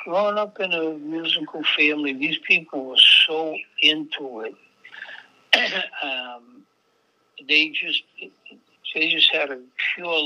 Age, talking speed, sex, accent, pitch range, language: 60-79, 110 wpm, male, American, 135-160 Hz, English